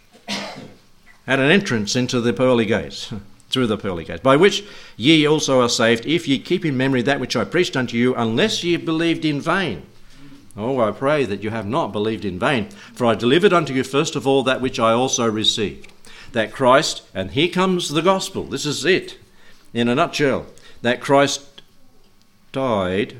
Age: 60-79